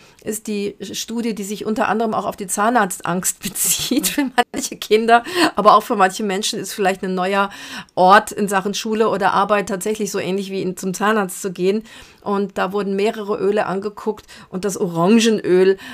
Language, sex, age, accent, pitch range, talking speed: German, female, 40-59, German, 185-215 Hz, 175 wpm